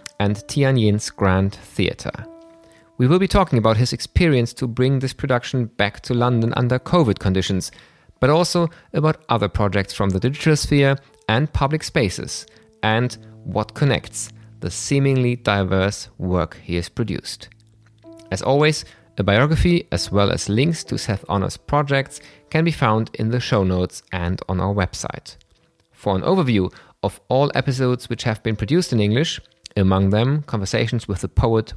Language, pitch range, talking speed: German, 105-140 Hz, 160 wpm